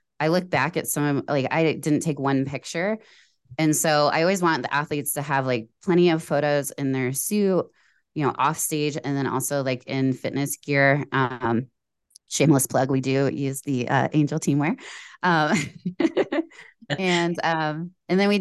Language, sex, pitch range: English, female, 130-160 Hz